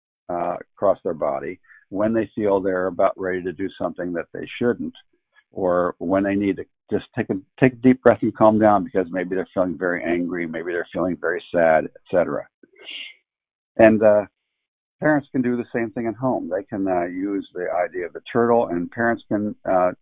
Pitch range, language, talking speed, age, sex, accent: 95-120 Hz, English, 200 wpm, 60-79, male, American